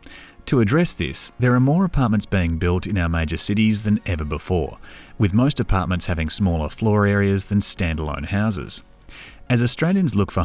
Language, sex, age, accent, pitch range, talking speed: English, male, 30-49, Australian, 85-115 Hz, 170 wpm